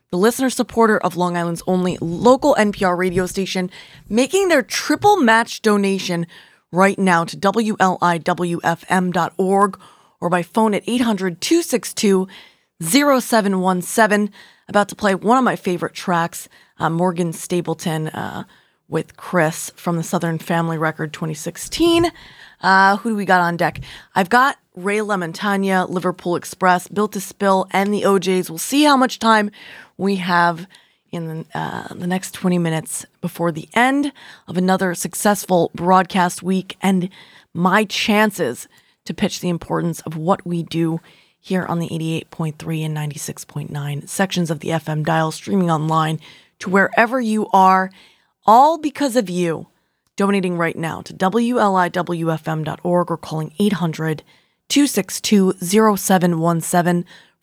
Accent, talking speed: American, 130 wpm